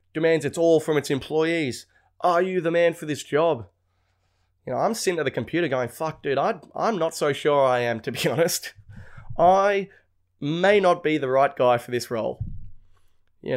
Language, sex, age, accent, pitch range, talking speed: English, male, 20-39, Australian, 110-165 Hz, 195 wpm